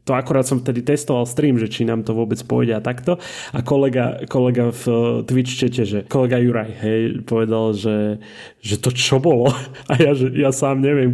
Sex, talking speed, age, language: male, 195 wpm, 30-49, Slovak